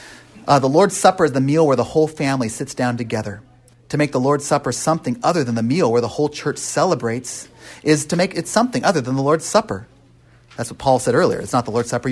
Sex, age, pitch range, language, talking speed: male, 40-59, 120-155 Hz, English, 245 wpm